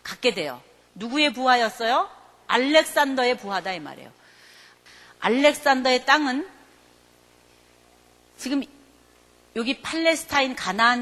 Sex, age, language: female, 40-59, Korean